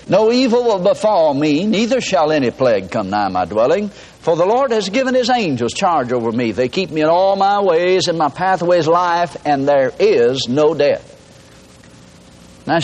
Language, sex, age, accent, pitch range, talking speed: English, male, 60-79, American, 120-190 Hz, 185 wpm